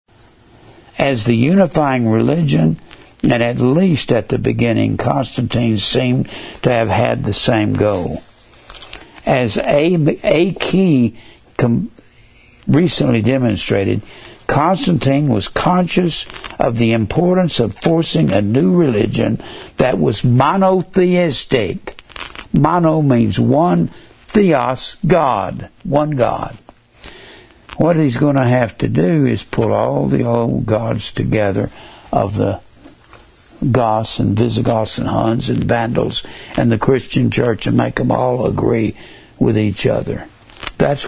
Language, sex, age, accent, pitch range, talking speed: English, male, 60-79, American, 110-135 Hz, 120 wpm